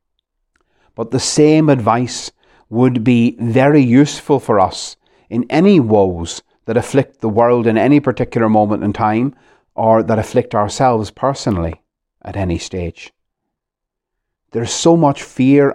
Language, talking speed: English, 135 wpm